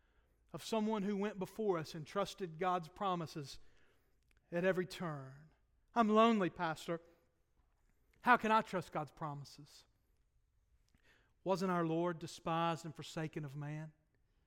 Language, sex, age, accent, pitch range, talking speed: English, male, 40-59, American, 175-250 Hz, 125 wpm